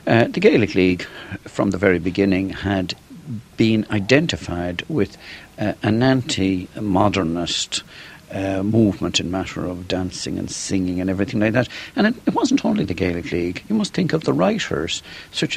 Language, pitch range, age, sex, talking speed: English, 90-105 Hz, 60-79, male, 160 wpm